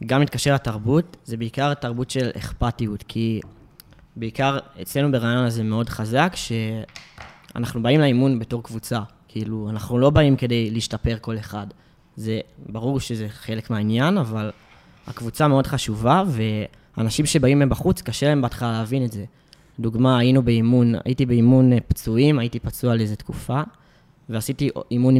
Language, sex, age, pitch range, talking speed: Hebrew, male, 20-39, 115-140 Hz, 140 wpm